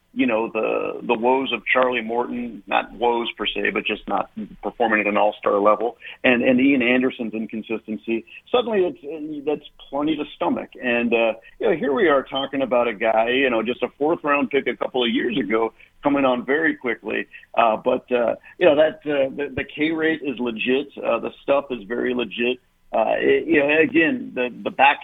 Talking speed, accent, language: 205 wpm, American, English